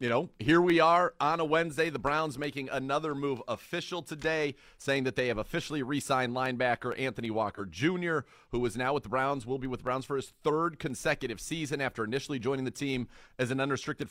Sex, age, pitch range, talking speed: male, 40-59, 115-140 Hz, 210 wpm